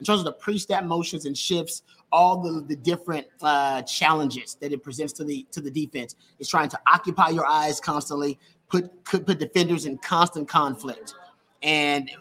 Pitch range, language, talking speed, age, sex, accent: 150-185 Hz, English, 180 wpm, 30-49, male, American